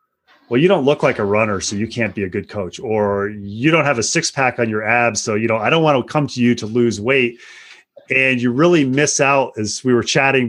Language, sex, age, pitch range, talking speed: English, male, 30-49, 110-135 Hz, 265 wpm